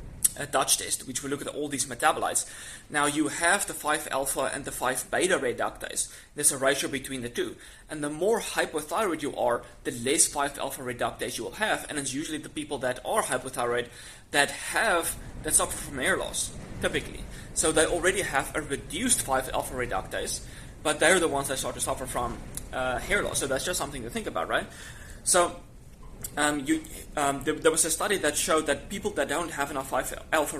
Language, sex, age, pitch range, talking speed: English, male, 20-39, 130-160 Hz, 190 wpm